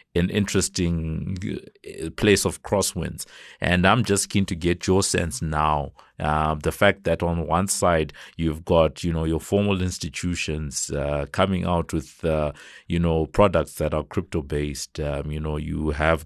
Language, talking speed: English, 170 wpm